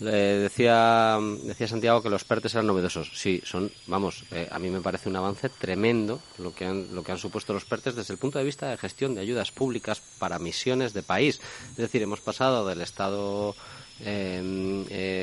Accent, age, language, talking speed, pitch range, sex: Spanish, 30-49, Spanish, 200 wpm, 95-120 Hz, male